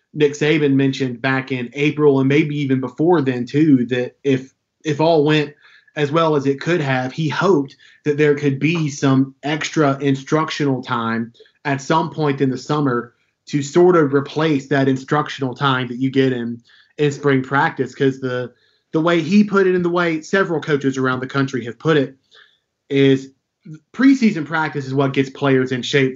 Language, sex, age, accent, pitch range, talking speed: English, male, 20-39, American, 130-155 Hz, 185 wpm